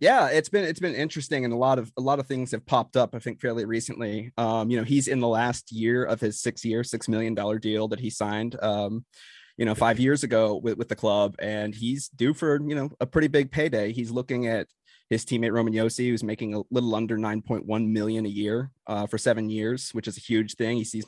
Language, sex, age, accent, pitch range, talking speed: English, male, 20-39, American, 110-125 Hz, 255 wpm